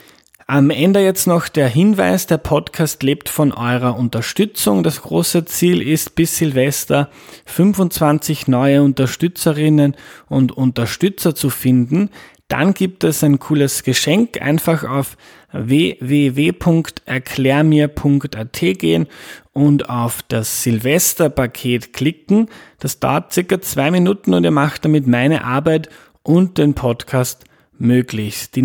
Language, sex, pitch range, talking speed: German, male, 130-160 Hz, 115 wpm